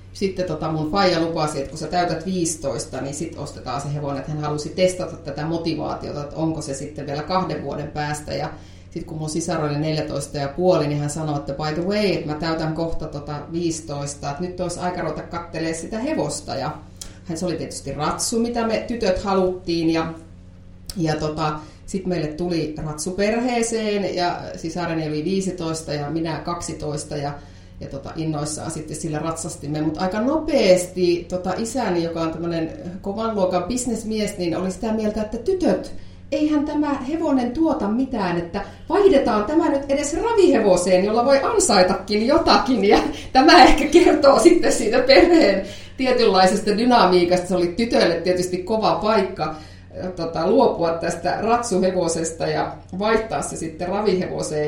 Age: 30-49